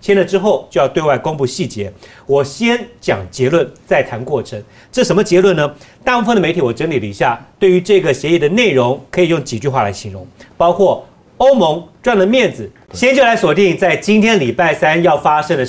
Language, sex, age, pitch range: Chinese, male, 40-59, 130-185 Hz